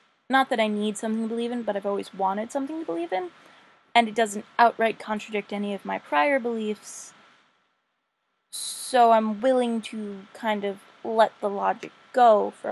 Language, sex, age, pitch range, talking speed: English, female, 20-39, 205-245 Hz, 175 wpm